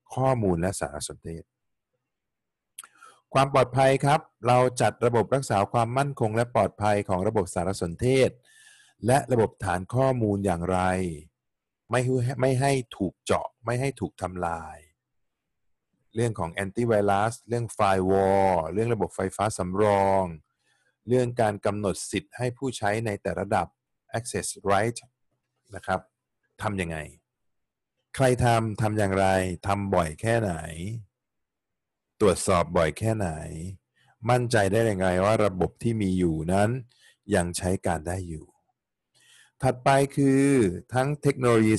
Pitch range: 95-120 Hz